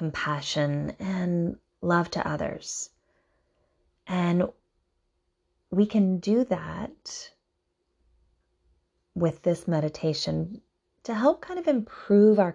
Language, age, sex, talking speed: English, 30-49, female, 90 wpm